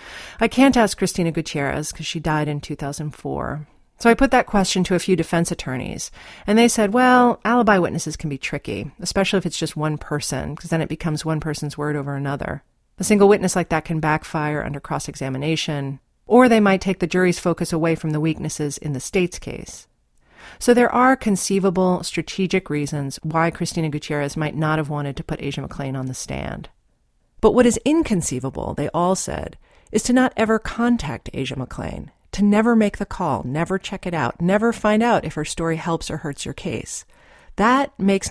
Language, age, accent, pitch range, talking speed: English, 40-59, American, 150-200 Hz, 195 wpm